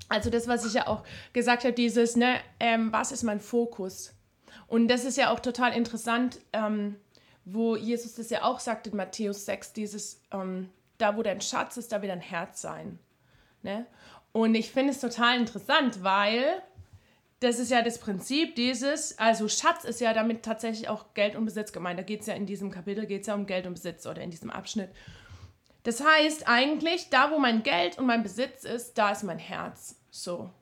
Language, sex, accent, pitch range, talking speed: German, female, German, 205-245 Hz, 200 wpm